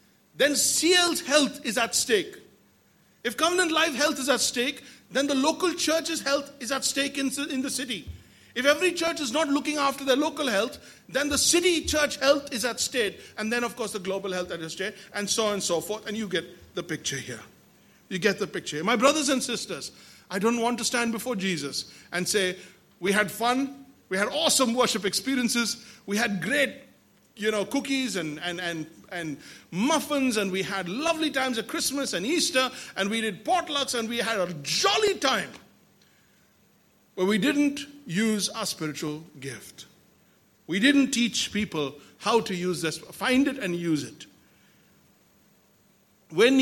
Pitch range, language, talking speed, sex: 190-280 Hz, English, 180 wpm, male